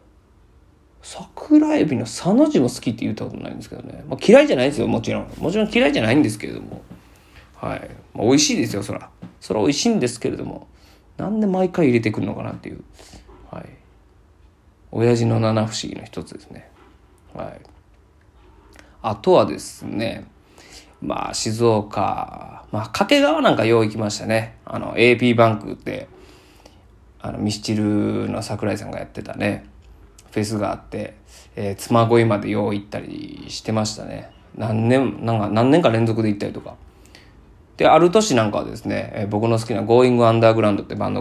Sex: male